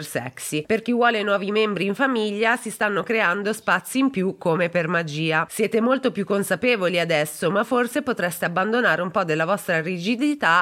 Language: Italian